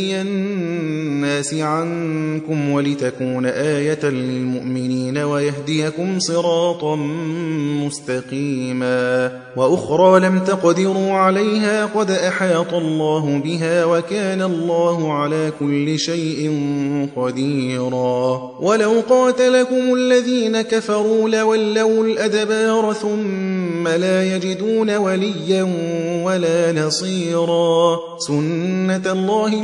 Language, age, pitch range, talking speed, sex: Persian, 30-49, 150-185 Hz, 75 wpm, male